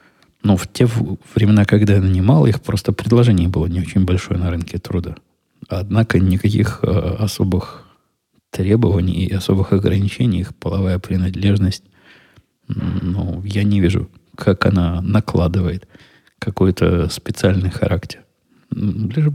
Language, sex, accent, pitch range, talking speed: Russian, male, native, 90-105 Hz, 120 wpm